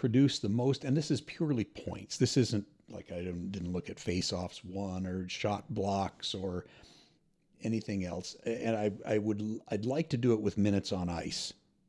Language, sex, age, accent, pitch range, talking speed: English, male, 50-69, American, 95-120 Hz, 180 wpm